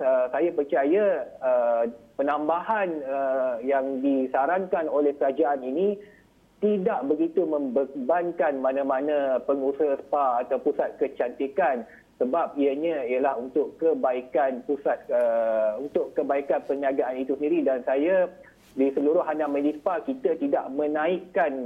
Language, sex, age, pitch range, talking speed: Malay, male, 30-49, 135-165 Hz, 115 wpm